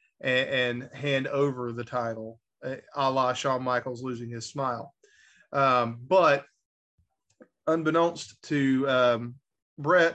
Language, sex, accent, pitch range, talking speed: English, male, American, 125-160 Hz, 105 wpm